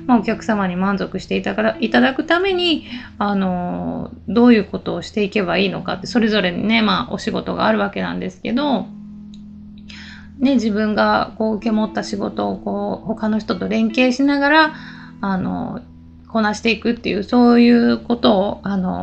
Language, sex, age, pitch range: Japanese, female, 20-39, 195-250 Hz